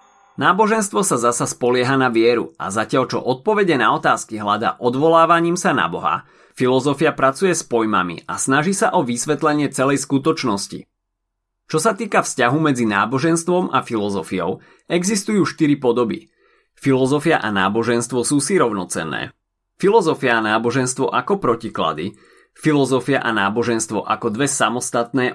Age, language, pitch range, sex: 30-49, Slovak, 120-170 Hz, male